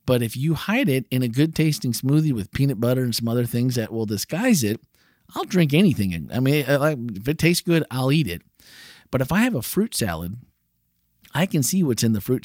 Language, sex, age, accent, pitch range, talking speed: English, male, 50-69, American, 120-155 Hz, 225 wpm